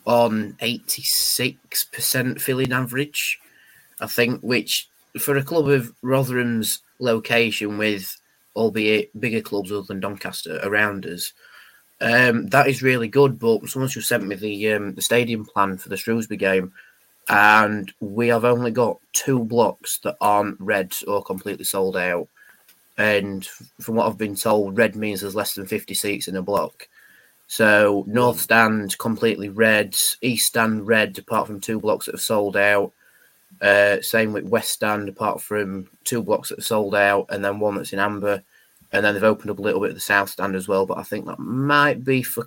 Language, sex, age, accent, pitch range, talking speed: English, male, 20-39, British, 100-125 Hz, 180 wpm